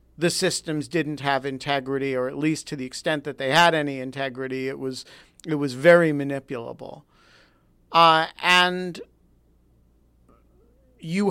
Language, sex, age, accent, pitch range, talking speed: English, male, 50-69, American, 130-170 Hz, 135 wpm